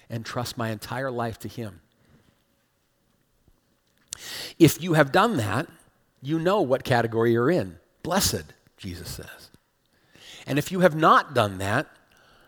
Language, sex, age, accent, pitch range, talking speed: English, male, 40-59, American, 120-165 Hz, 135 wpm